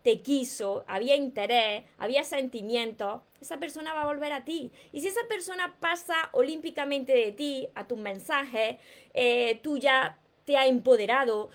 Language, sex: Spanish, female